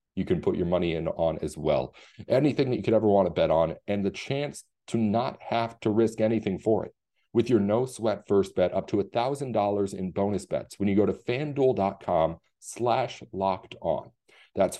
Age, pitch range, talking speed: 40-59, 100-120 Hz, 205 wpm